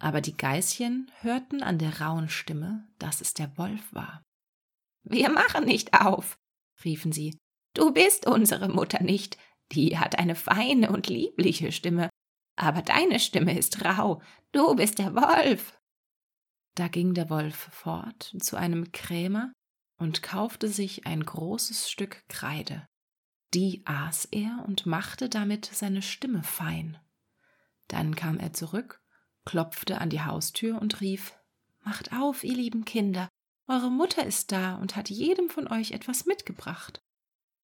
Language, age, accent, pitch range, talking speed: German, 30-49, German, 165-220 Hz, 145 wpm